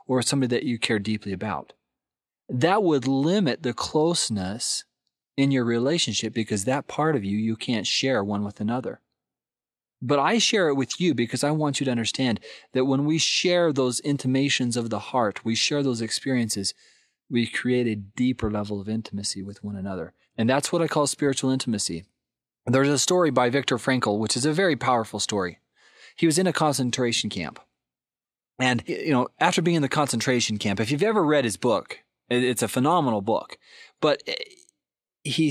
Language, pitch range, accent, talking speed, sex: English, 115-150 Hz, American, 180 wpm, male